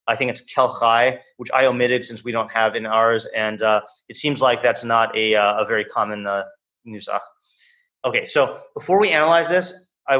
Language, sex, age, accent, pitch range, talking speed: English, male, 30-49, American, 110-140 Hz, 200 wpm